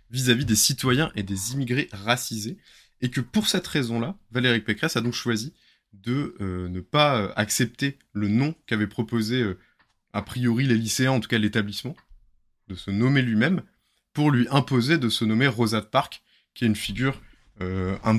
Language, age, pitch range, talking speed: French, 20-39, 105-130 Hz, 180 wpm